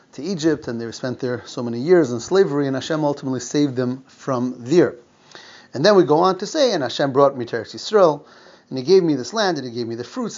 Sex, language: male, English